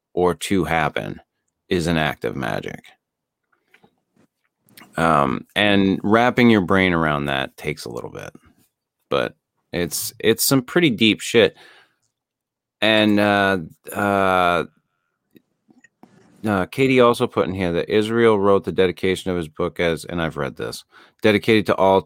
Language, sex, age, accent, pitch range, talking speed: English, male, 30-49, American, 80-100 Hz, 140 wpm